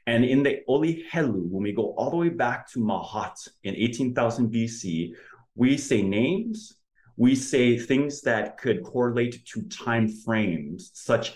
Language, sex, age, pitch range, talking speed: English, male, 30-49, 100-125 Hz, 155 wpm